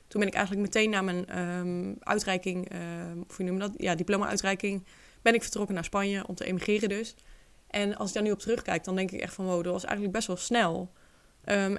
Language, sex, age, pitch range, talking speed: Dutch, female, 20-39, 180-205 Hz, 235 wpm